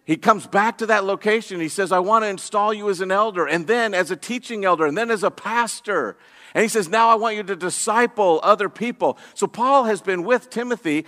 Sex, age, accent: male, 50-69, American